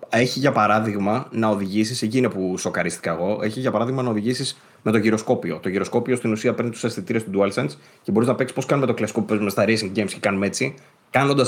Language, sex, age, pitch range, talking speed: Greek, male, 20-39, 100-125 Hz, 230 wpm